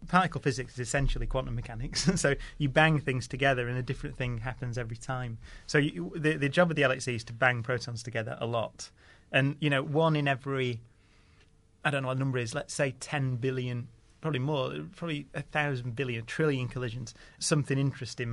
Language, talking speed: English, 195 wpm